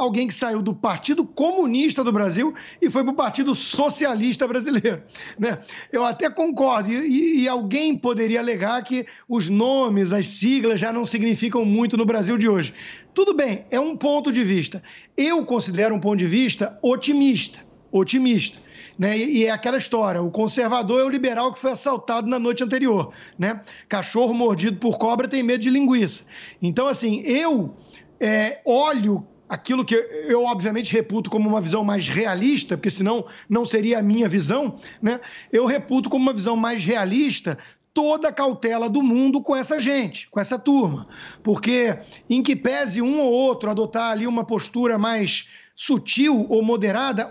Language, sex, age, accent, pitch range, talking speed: Portuguese, male, 50-69, Brazilian, 220-270 Hz, 170 wpm